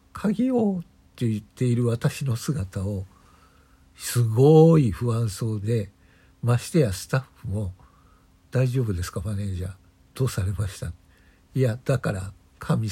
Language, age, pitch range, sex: Japanese, 60-79, 95-125 Hz, male